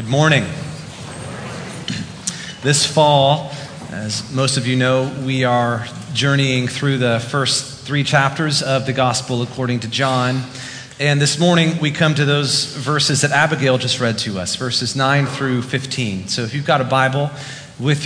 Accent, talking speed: American, 160 wpm